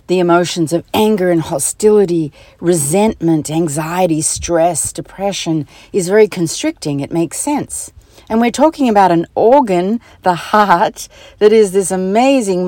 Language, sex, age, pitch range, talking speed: English, female, 60-79, 150-210 Hz, 135 wpm